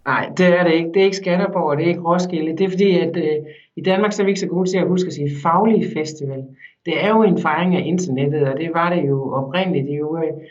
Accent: native